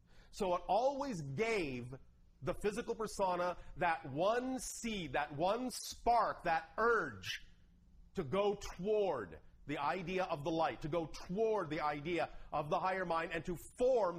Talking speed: 150 wpm